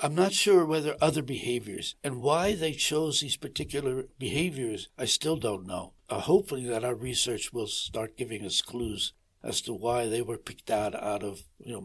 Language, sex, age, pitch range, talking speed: English, male, 60-79, 115-150 Hz, 190 wpm